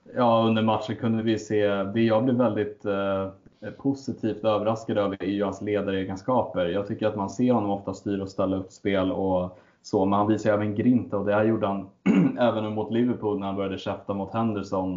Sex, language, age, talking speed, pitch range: male, Swedish, 20-39, 195 wpm, 95-110 Hz